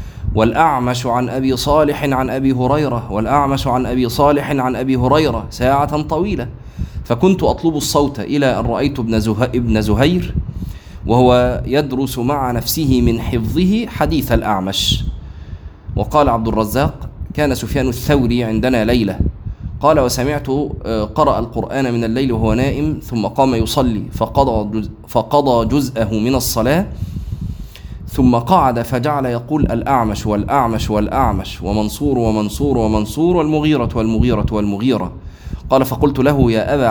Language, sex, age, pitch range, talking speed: Arabic, male, 20-39, 105-135 Hz, 125 wpm